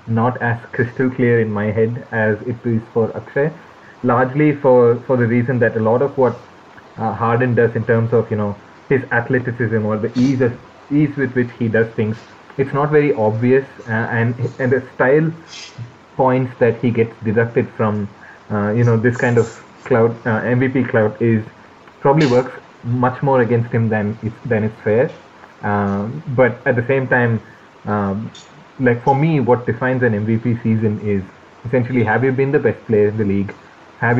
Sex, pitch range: male, 110-130 Hz